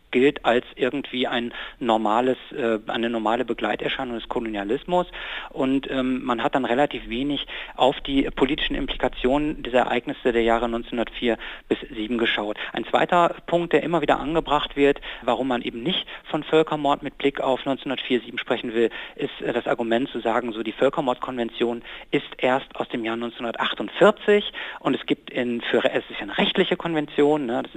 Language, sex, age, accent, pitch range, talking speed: German, male, 50-69, German, 115-140 Hz, 165 wpm